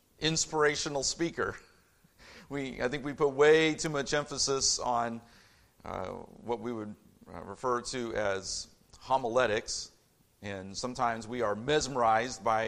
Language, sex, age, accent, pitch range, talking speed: English, male, 50-69, American, 115-145 Hz, 125 wpm